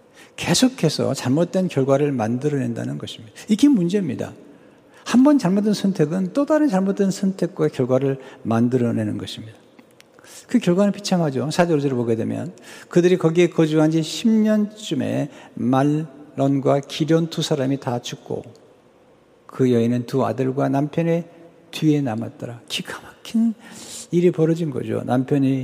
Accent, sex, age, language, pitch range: native, male, 60-79, Korean, 135-180 Hz